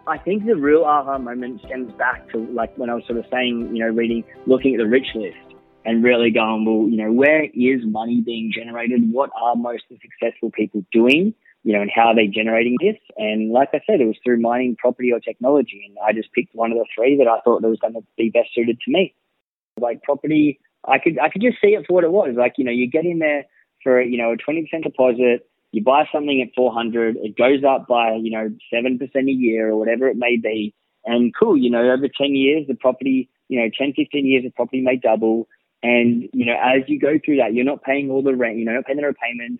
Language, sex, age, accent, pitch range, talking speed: English, male, 20-39, Australian, 115-135 Hz, 245 wpm